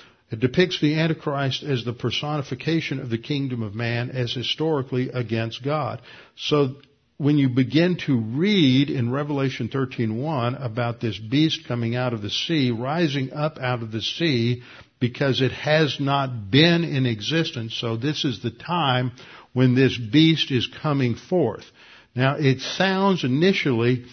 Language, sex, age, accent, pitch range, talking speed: English, male, 60-79, American, 120-145 Hz, 155 wpm